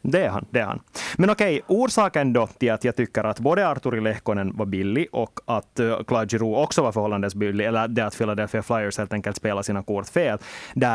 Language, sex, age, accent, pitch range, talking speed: Swedish, male, 30-49, Finnish, 110-150 Hz, 215 wpm